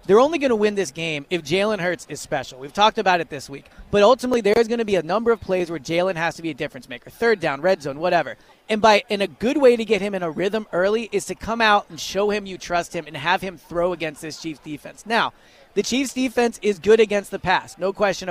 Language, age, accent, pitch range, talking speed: English, 30-49, American, 170-215 Hz, 270 wpm